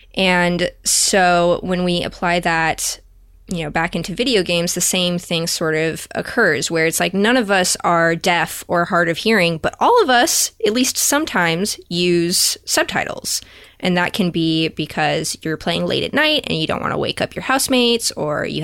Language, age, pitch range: English, 10-29, 160-190 Hz